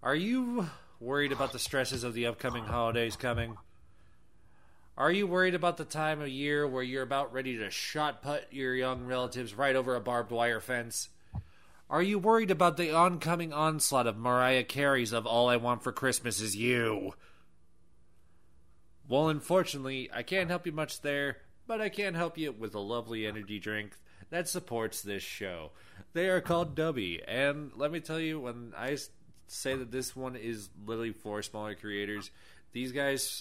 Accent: American